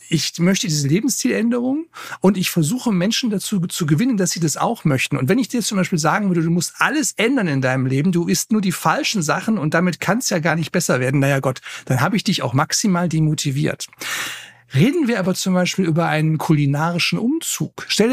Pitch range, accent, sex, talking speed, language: 155-215 Hz, German, male, 210 wpm, German